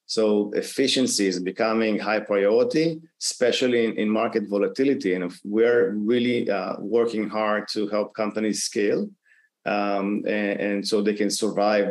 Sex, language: male, English